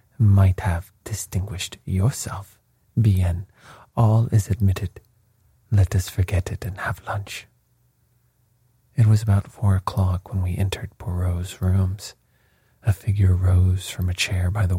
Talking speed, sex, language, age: 135 wpm, male, English, 40-59